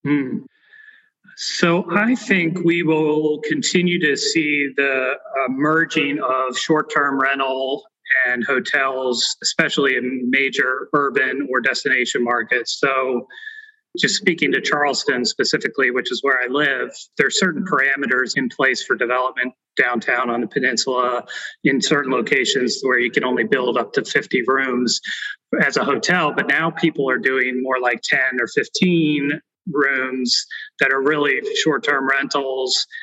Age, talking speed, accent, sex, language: 30-49, 140 wpm, American, male, English